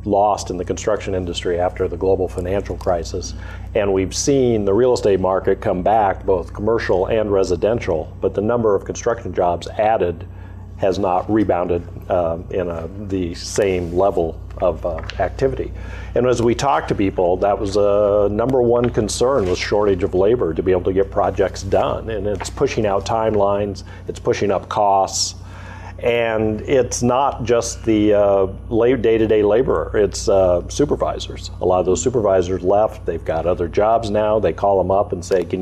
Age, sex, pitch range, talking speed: 50-69, male, 90-105 Hz, 170 wpm